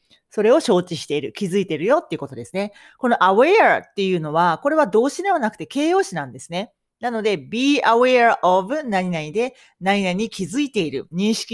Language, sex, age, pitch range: Japanese, female, 40-59, 170-235 Hz